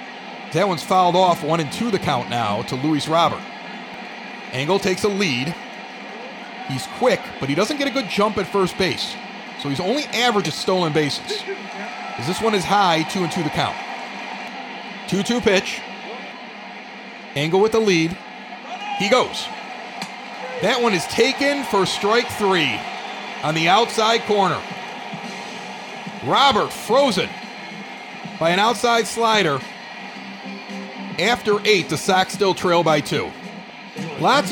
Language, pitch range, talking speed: English, 160-225 Hz, 135 wpm